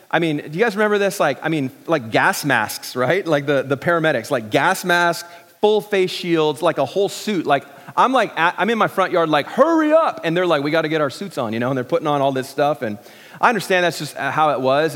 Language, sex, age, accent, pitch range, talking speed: English, male, 30-49, American, 150-195 Hz, 265 wpm